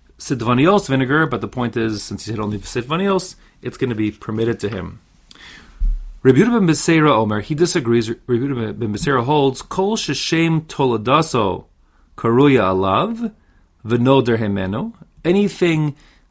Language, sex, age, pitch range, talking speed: English, male, 40-59, 105-155 Hz, 115 wpm